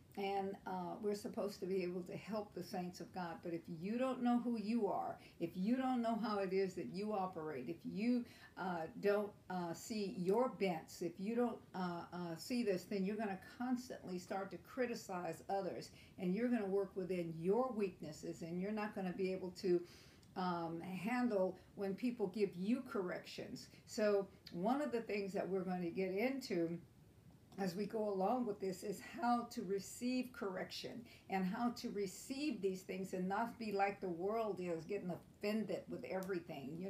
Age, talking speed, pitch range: 60-79, 190 wpm, 180-225 Hz